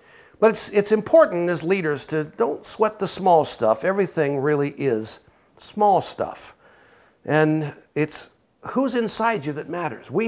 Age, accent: 60-79, American